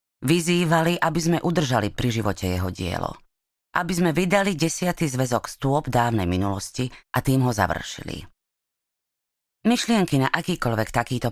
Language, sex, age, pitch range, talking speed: Slovak, female, 30-49, 120-175 Hz, 125 wpm